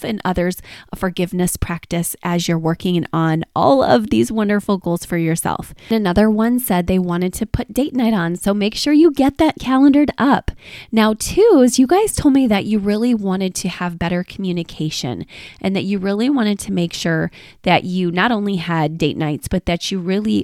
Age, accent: 20-39, American